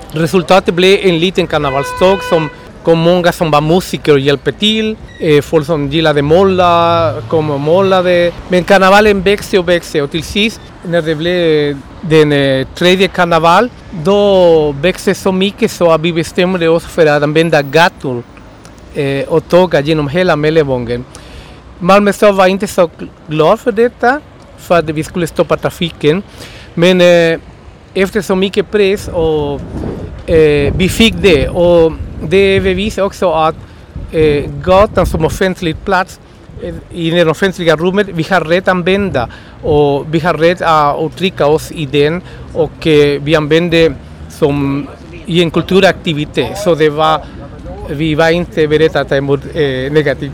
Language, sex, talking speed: Swedish, male, 145 wpm